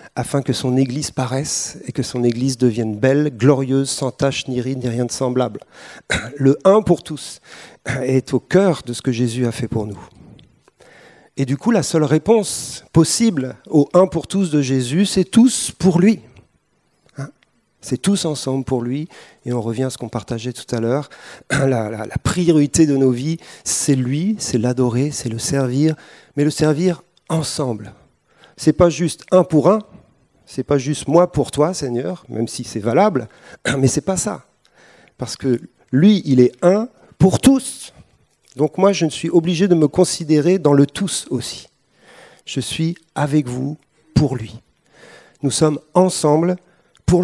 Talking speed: 190 wpm